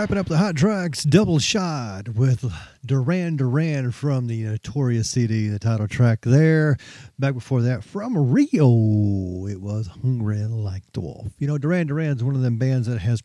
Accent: American